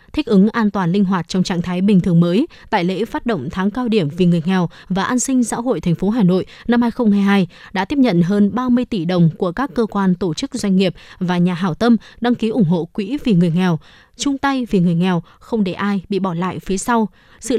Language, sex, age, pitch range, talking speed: Vietnamese, female, 20-39, 185-235 Hz, 255 wpm